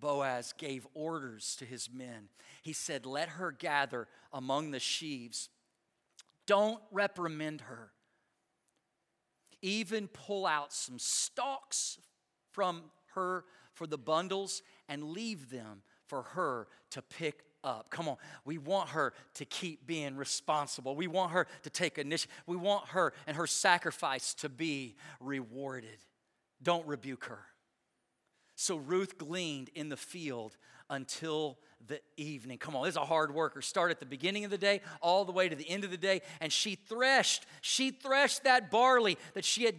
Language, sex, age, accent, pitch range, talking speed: English, male, 40-59, American, 150-225 Hz, 155 wpm